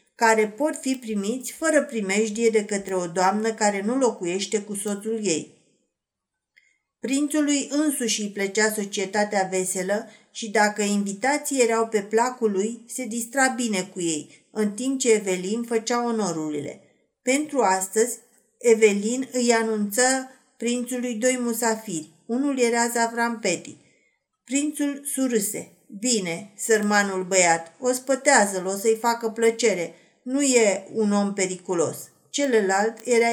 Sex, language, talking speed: female, Romanian, 125 wpm